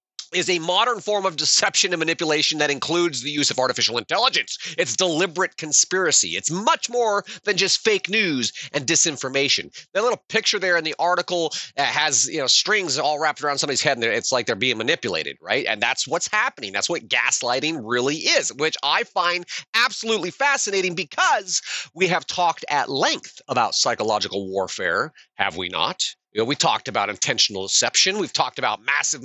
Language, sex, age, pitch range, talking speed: English, male, 30-49, 145-210 Hz, 175 wpm